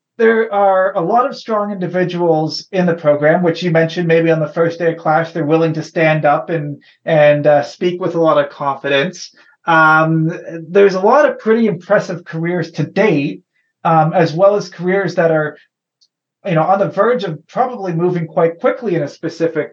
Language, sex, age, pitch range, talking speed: English, male, 30-49, 155-195 Hz, 195 wpm